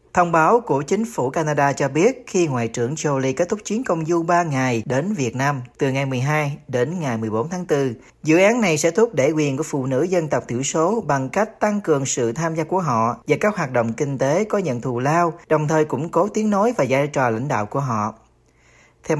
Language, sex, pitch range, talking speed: Vietnamese, male, 130-175 Hz, 240 wpm